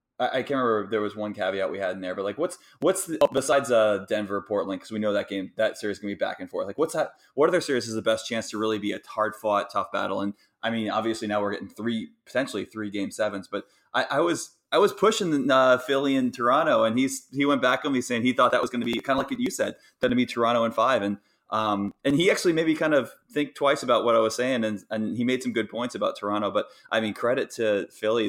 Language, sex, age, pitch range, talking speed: English, male, 20-39, 100-125 Hz, 285 wpm